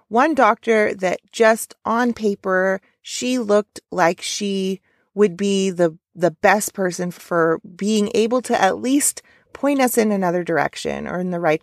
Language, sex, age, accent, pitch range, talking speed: English, female, 30-49, American, 175-225 Hz, 160 wpm